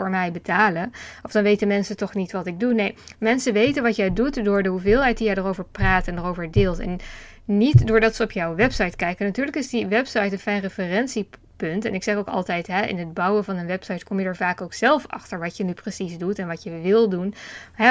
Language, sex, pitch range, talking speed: English, female, 185-225 Hz, 245 wpm